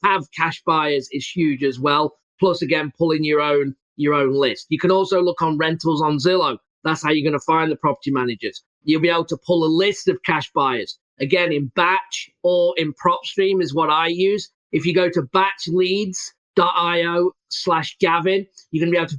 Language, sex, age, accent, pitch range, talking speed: English, male, 30-49, British, 160-190 Hz, 205 wpm